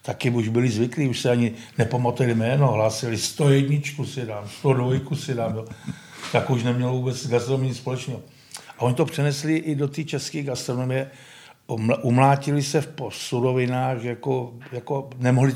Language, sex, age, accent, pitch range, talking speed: Czech, male, 50-69, native, 115-135 Hz, 155 wpm